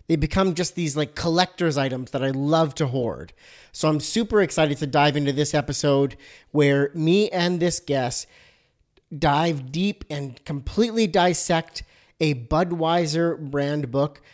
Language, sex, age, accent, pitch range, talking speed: English, male, 40-59, American, 145-180 Hz, 145 wpm